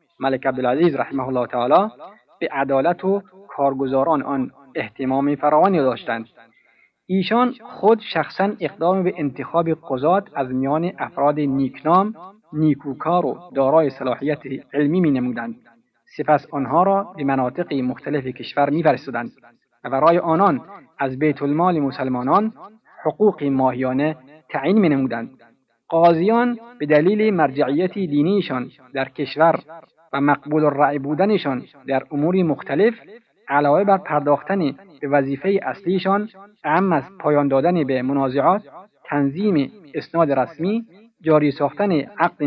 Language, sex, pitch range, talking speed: Persian, male, 140-185 Hz, 115 wpm